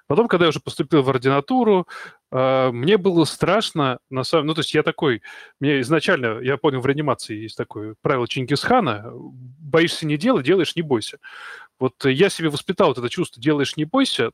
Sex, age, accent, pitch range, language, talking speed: male, 20-39, native, 130-165 Hz, Russian, 180 wpm